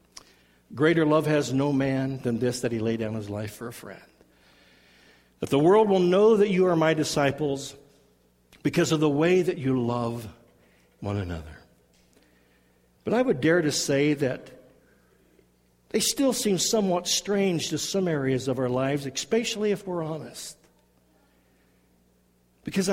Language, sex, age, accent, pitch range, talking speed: English, male, 60-79, American, 125-195 Hz, 150 wpm